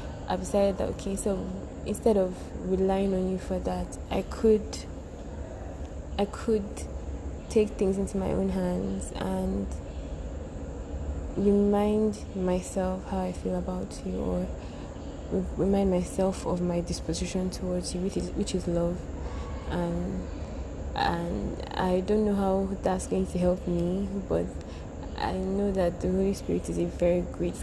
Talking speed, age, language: 145 wpm, 20-39, English